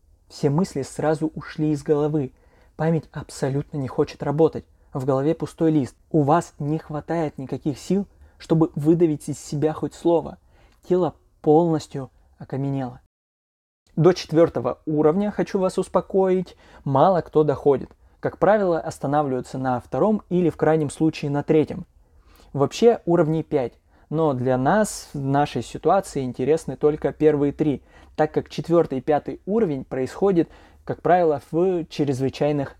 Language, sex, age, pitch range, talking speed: Russian, male, 20-39, 140-165 Hz, 135 wpm